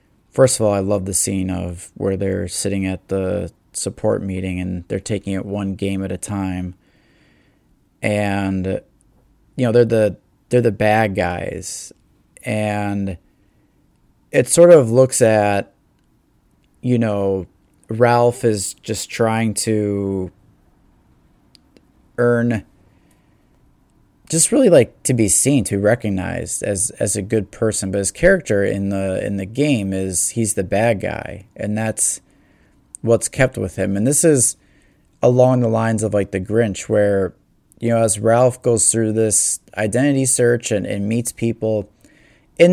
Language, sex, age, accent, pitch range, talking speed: English, male, 30-49, American, 95-120 Hz, 145 wpm